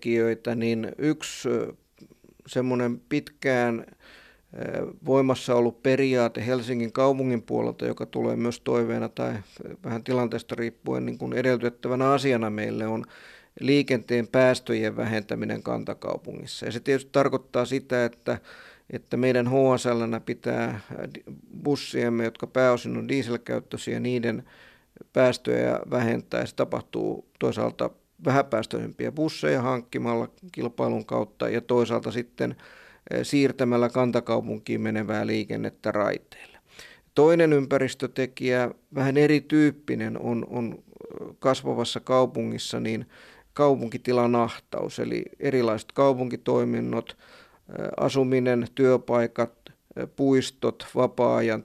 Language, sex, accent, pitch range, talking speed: Finnish, male, native, 115-130 Hz, 90 wpm